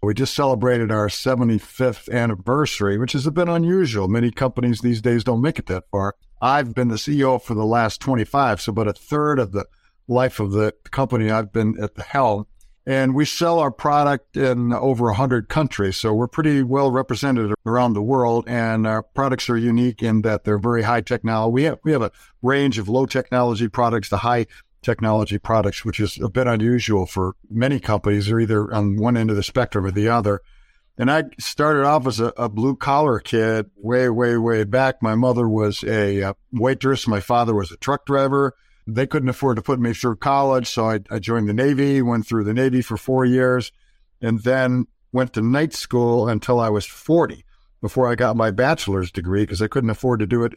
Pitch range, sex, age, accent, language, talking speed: 110-130 Hz, male, 60-79, American, English, 205 wpm